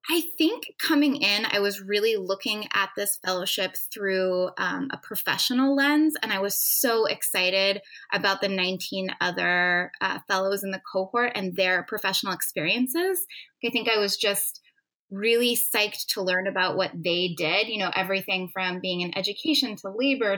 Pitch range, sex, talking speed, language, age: 185-230 Hz, female, 165 wpm, English, 10-29